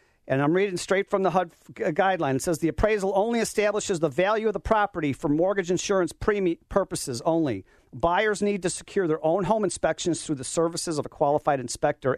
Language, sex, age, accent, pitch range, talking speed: English, male, 40-59, American, 140-190 Hz, 190 wpm